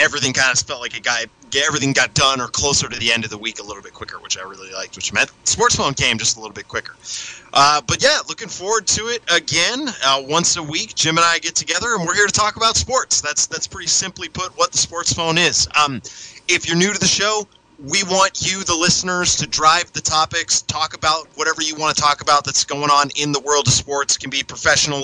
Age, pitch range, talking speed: 30-49, 130-165 Hz, 255 wpm